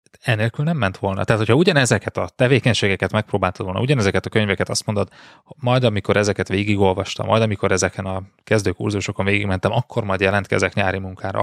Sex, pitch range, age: male, 95-115 Hz, 20-39